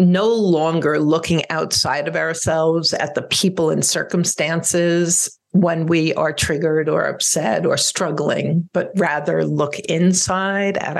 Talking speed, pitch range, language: 130 wpm, 150-180 Hz, English